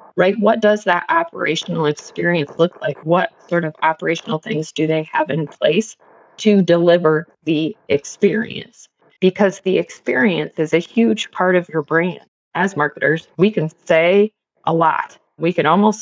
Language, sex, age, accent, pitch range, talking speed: English, female, 20-39, American, 155-195 Hz, 155 wpm